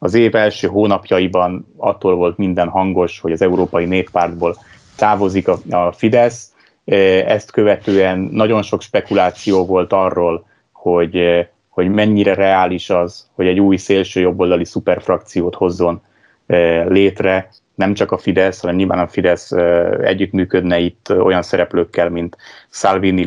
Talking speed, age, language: 125 wpm, 30-49, Hungarian